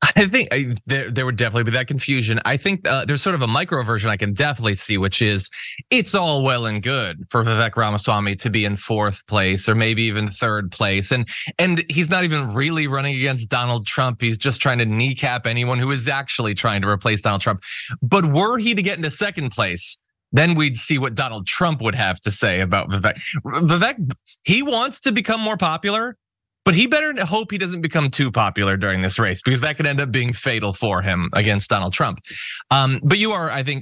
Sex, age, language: male, 20-39, English